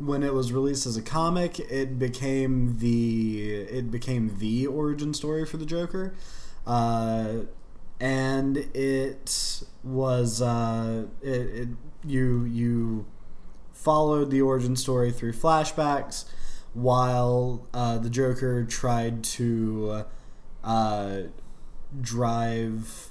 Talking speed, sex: 100 wpm, male